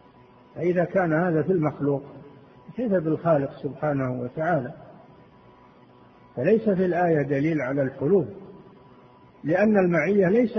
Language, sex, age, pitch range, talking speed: Arabic, male, 50-69, 140-180 Hz, 100 wpm